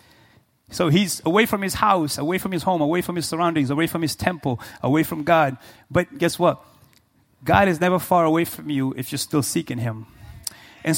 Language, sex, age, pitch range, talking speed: English, male, 30-49, 125-175 Hz, 200 wpm